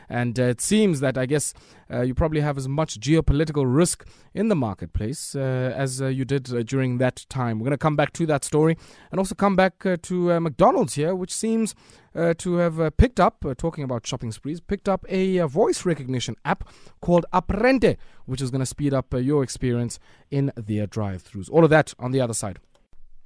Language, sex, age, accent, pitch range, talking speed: English, male, 20-39, South African, 135-185 Hz, 220 wpm